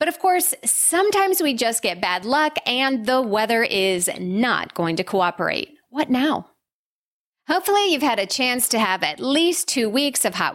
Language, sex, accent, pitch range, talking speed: English, female, American, 195-285 Hz, 180 wpm